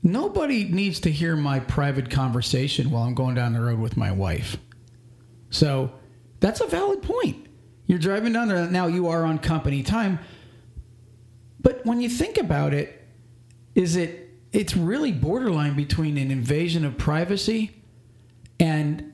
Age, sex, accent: 40-59, male, American